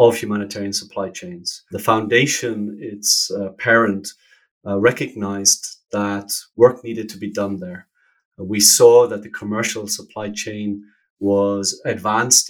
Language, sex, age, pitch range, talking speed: English, male, 30-49, 100-115 Hz, 130 wpm